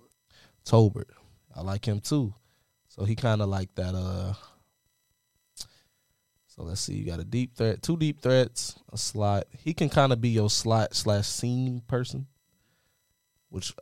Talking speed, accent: 155 wpm, American